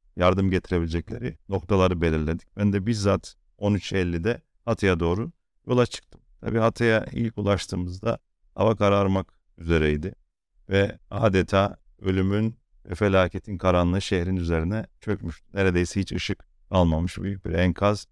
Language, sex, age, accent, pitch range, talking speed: Turkish, male, 40-59, native, 85-100 Hz, 115 wpm